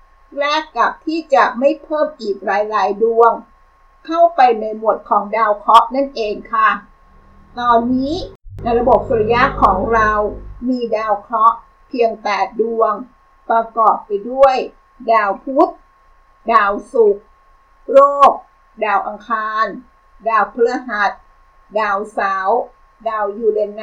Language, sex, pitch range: Thai, female, 215-285 Hz